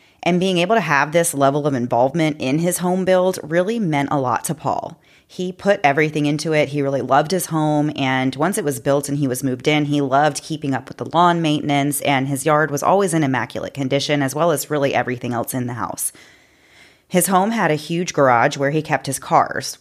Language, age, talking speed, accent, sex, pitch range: English, 30-49, 225 wpm, American, female, 135-165 Hz